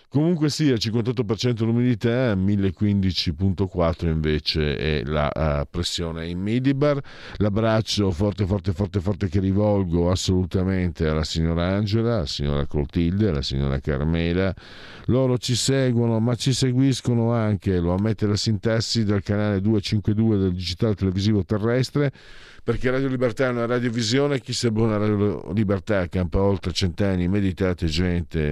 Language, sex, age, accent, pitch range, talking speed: Italian, male, 50-69, native, 95-115 Hz, 135 wpm